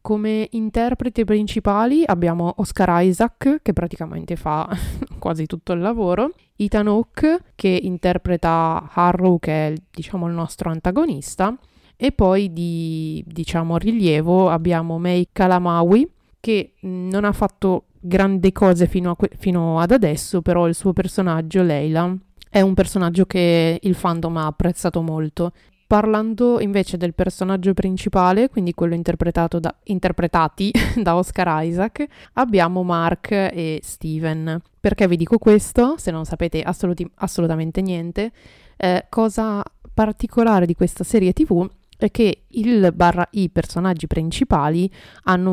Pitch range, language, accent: 170-205 Hz, Italian, native